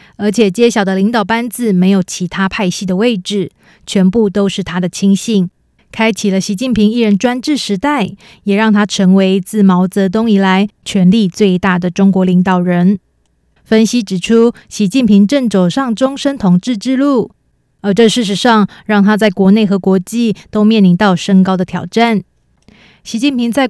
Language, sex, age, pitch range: Chinese, female, 20-39, 190-225 Hz